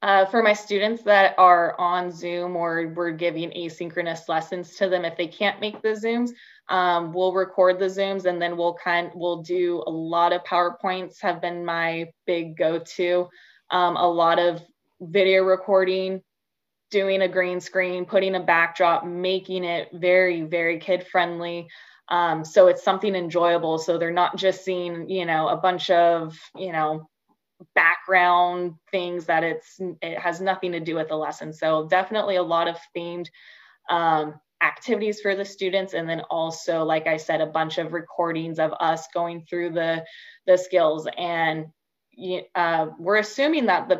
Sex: female